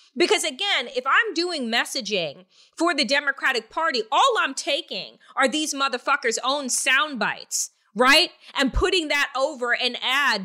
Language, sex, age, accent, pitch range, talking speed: English, female, 30-49, American, 255-340 Hz, 150 wpm